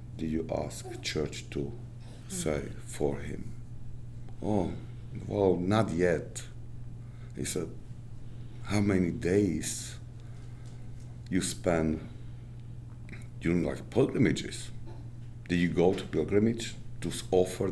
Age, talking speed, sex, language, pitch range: 50-69, 100 wpm, male, English, 95-120 Hz